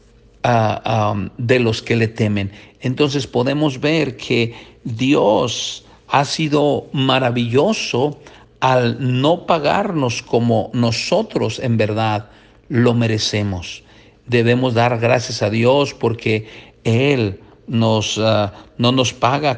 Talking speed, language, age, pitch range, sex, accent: 100 wpm, Spanish, 50-69, 110-140 Hz, male, Mexican